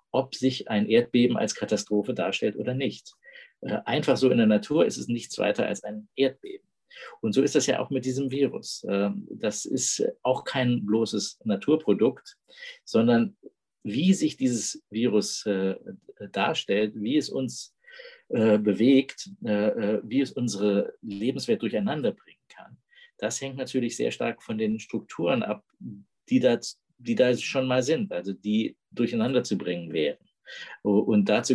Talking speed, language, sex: 145 wpm, German, male